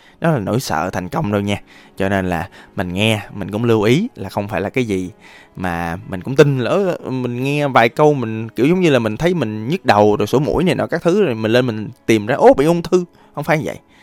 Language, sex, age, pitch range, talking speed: Vietnamese, male, 20-39, 95-145 Hz, 270 wpm